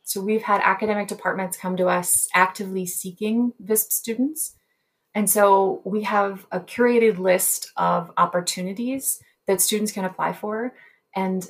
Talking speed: 140 wpm